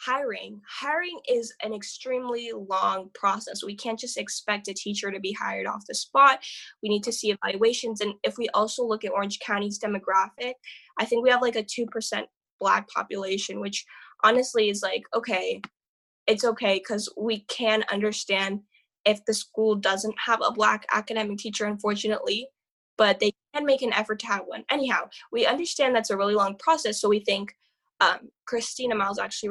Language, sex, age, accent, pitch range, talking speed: English, female, 10-29, American, 205-235 Hz, 175 wpm